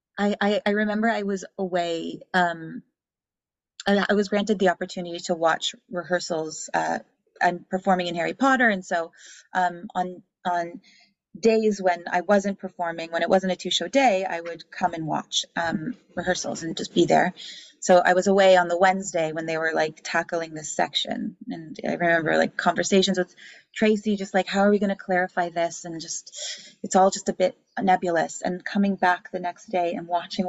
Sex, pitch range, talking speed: female, 175-200 Hz, 190 wpm